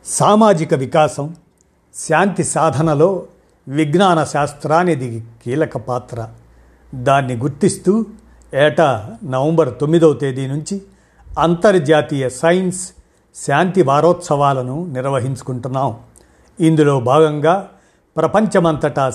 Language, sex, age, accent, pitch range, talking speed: Telugu, male, 50-69, native, 130-165 Hz, 70 wpm